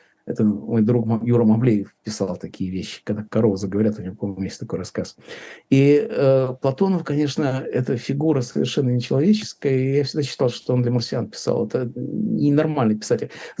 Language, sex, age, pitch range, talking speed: Russian, male, 50-69, 115-165 Hz, 165 wpm